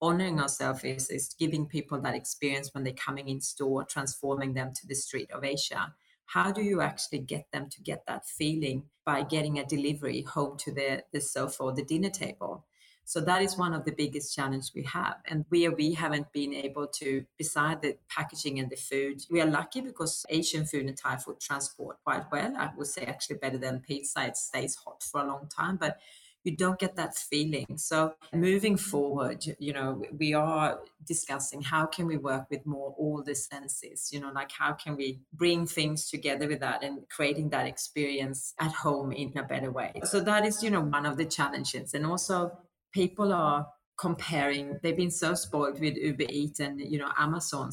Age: 30-49